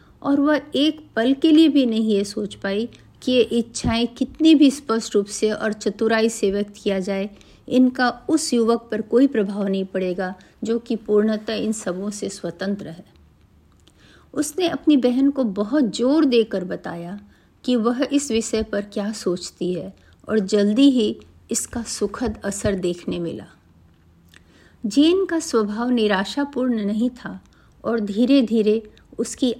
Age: 50-69